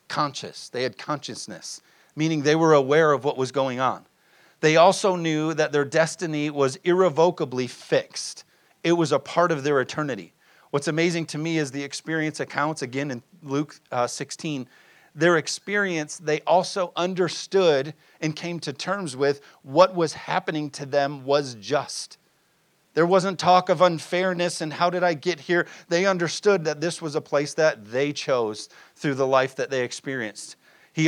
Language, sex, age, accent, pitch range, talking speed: English, male, 40-59, American, 130-165 Hz, 170 wpm